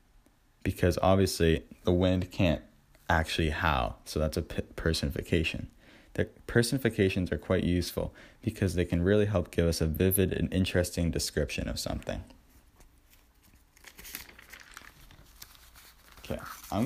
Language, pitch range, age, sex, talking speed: English, 80-95 Hz, 20-39, male, 115 wpm